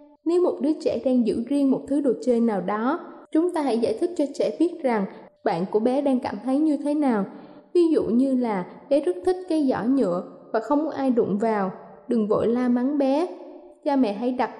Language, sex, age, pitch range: Thai, female, 10-29, 230-295 Hz